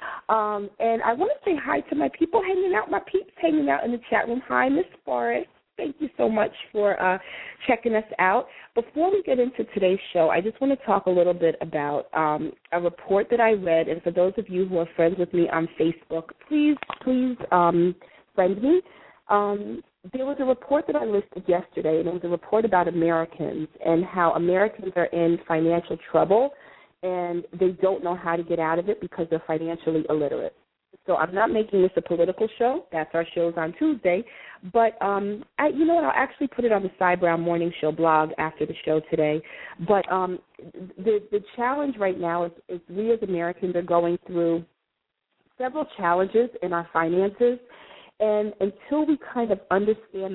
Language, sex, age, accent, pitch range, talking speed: English, female, 30-49, American, 170-230 Hz, 200 wpm